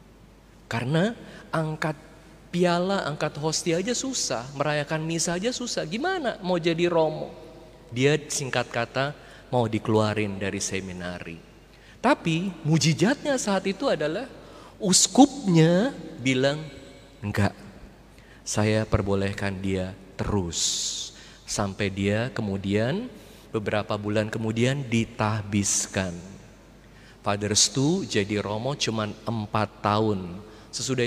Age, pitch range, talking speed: 30-49, 105-145 Hz, 95 wpm